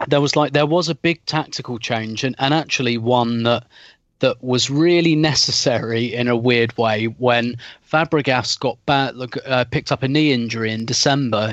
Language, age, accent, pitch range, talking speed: English, 30-49, British, 115-145 Hz, 175 wpm